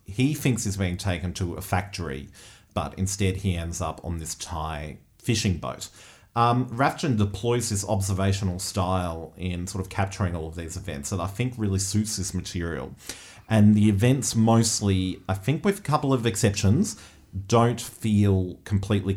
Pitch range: 95-105 Hz